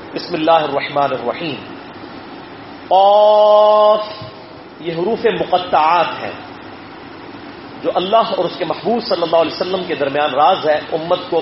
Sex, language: male, English